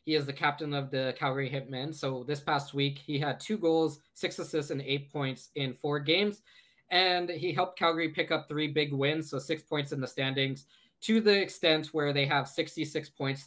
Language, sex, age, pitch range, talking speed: English, male, 20-39, 135-155 Hz, 210 wpm